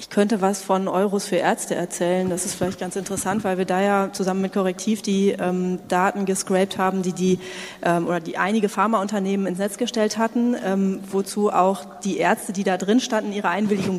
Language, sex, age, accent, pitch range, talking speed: German, female, 30-49, German, 185-215 Hz, 200 wpm